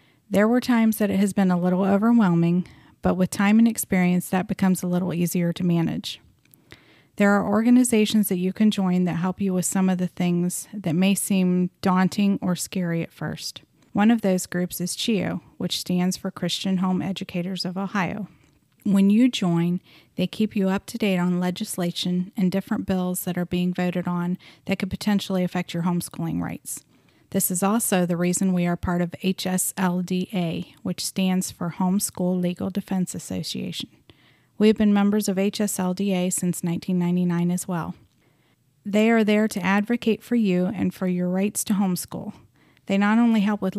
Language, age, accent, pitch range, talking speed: English, 30-49, American, 180-200 Hz, 180 wpm